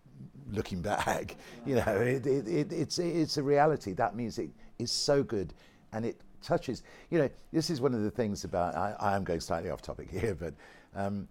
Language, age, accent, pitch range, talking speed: English, 60-79, British, 85-110 Hz, 185 wpm